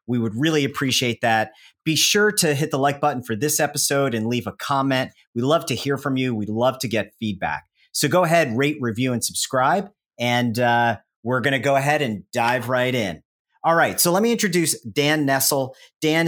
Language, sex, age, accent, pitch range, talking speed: English, male, 40-59, American, 115-145 Hz, 210 wpm